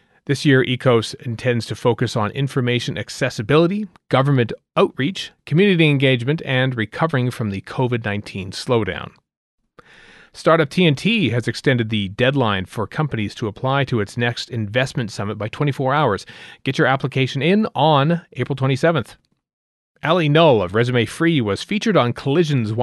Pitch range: 110-145 Hz